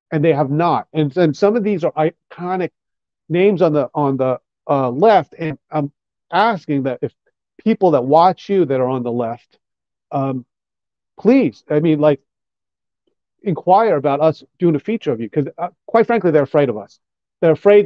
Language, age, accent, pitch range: English, 40-59, American, 145-200 Hz